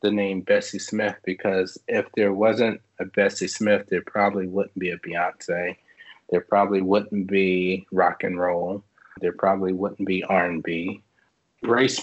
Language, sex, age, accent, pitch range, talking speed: English, male, 30-49, American, 95-105 Hz, 150 wpm